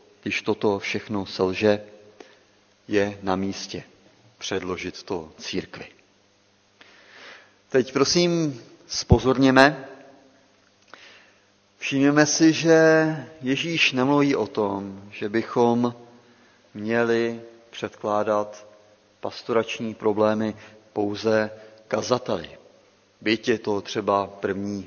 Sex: male